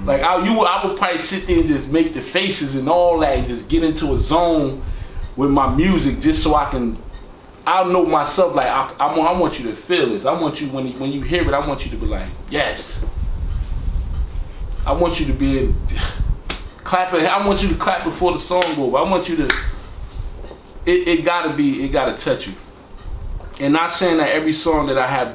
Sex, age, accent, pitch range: male, 20-39, American, 115-170 Hz